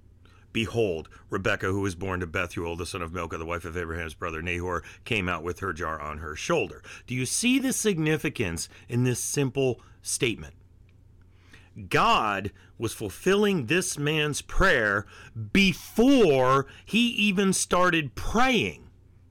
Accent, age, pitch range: American, 40-59, 95-160 Hz